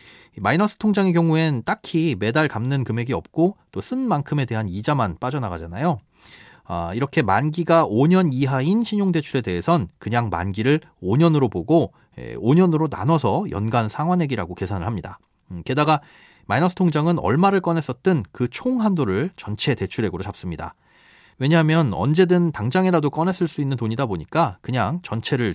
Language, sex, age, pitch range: Korean, male, 30-49, 110-165 Hz